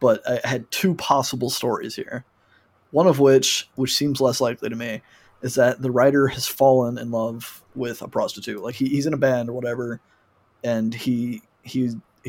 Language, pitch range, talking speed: English, 120-140 Hz, 185 wpm